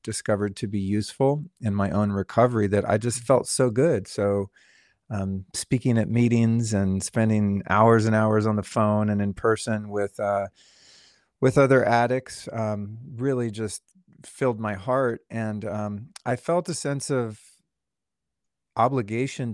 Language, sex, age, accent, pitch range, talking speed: English, male, 40-59, American, 100-120 Hz, 150 wpm